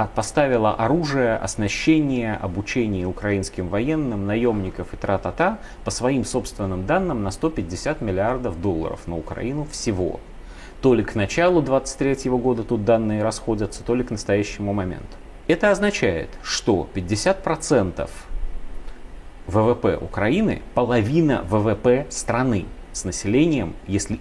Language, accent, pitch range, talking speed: Russian, native, 95-130 Hz, 115 wpm